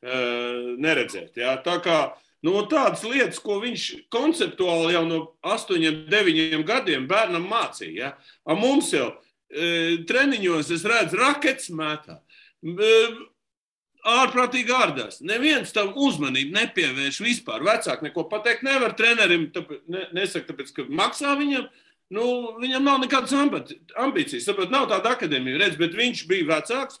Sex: male